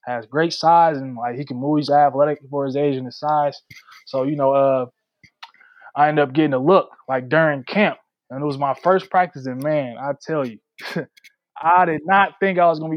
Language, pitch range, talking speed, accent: English, 135-180 Hz, 220 wpm, American